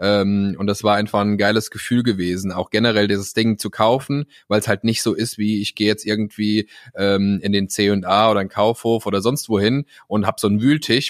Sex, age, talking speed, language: male, 30-49, 215 wpm, German